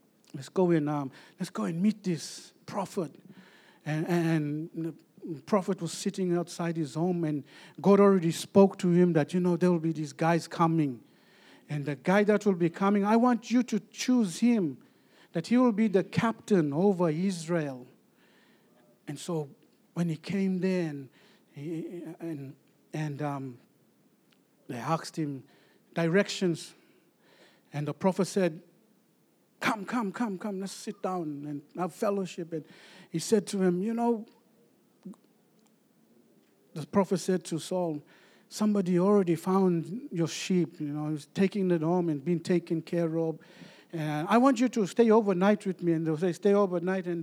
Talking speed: 165 wpm